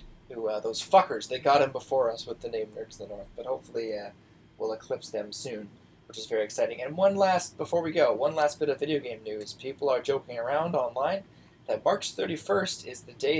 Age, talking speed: 20-39, 230 wpm